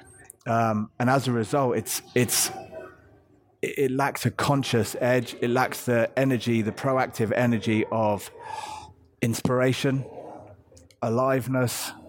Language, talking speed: English, 110 wpm